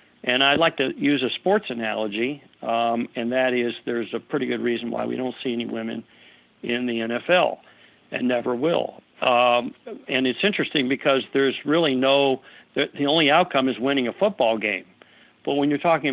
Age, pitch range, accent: 60-79, 120-150 Hz, American